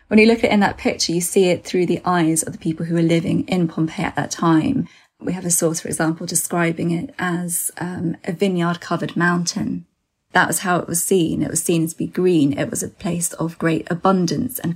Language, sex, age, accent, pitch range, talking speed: English, female, 20-39, British, 165-190 Hz, 235 wpm